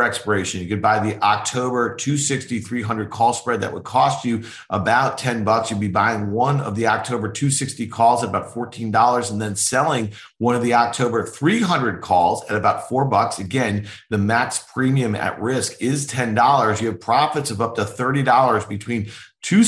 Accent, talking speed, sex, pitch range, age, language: American, 190 wpm, male, 110-130 Hz, 40-59, English